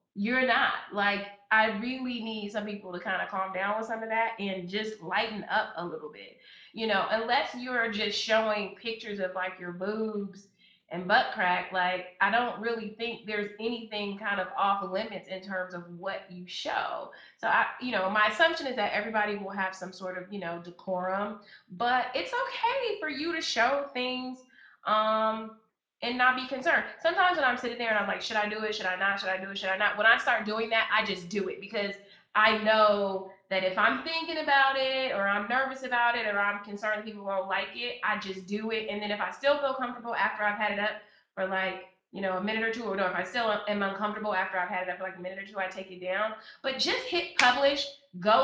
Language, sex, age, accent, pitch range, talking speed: English, female, 20-39, American, 195-235 Hz, 235 wpm